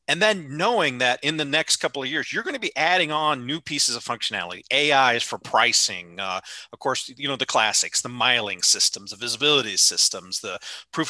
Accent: American